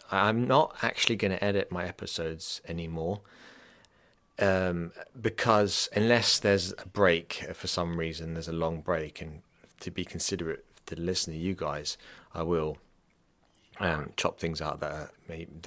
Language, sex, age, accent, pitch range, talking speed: English, male, 30-49, British, 85-100 Hz, 145 wpm